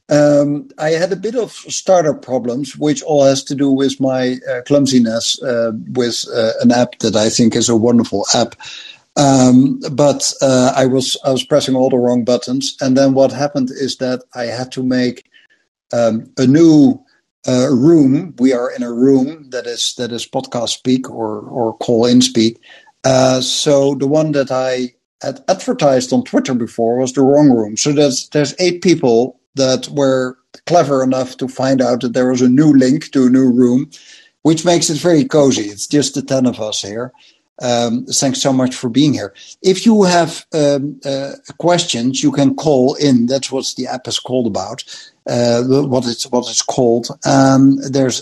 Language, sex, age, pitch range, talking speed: English, male, 60-79, 125-145 Hz, 190 wpm